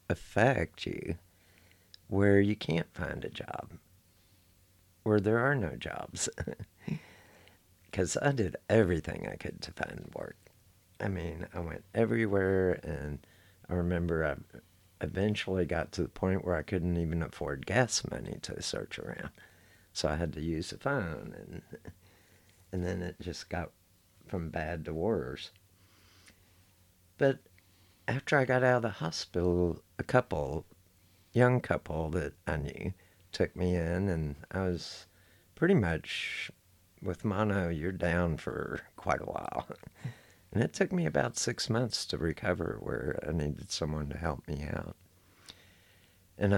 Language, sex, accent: English, male, American